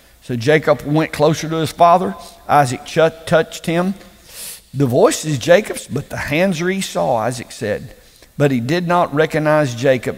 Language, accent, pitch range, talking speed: English, American, 145-185 Hz, 165 wpm